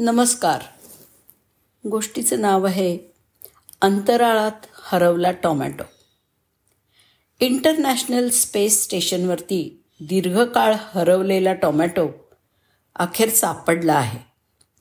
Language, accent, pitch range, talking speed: Marathi, native, 175-220 Hz, 65 wpm